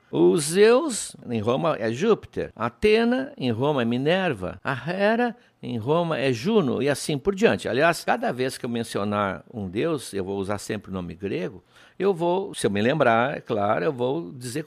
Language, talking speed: Portuguese, 190 wpm